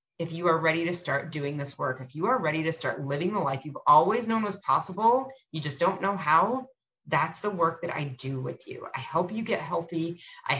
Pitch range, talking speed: 160-205 Hz, 240 wpm